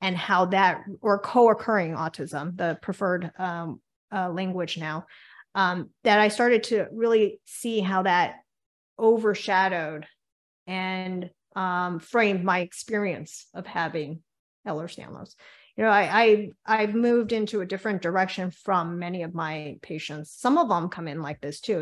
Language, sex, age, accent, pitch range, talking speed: English, female, 30-49, American, 175-210 Hz, 150 wpm